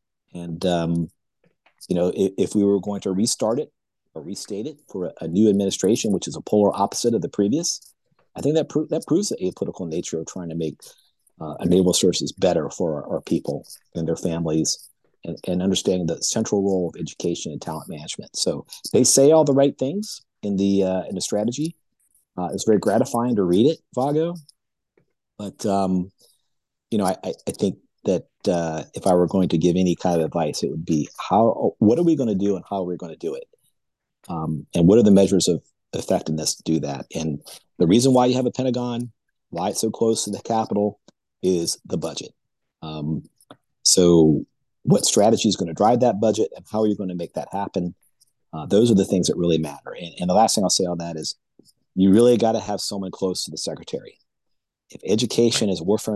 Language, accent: English, American